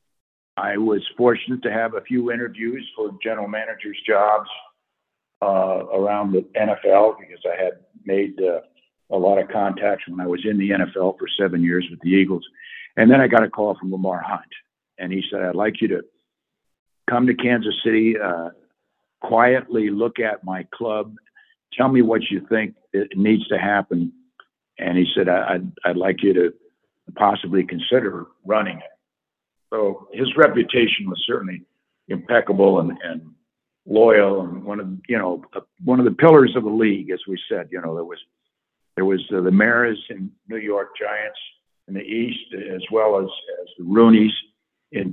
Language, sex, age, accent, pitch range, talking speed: English, male, 60-79, American, 95-115 Hz, 175 wpm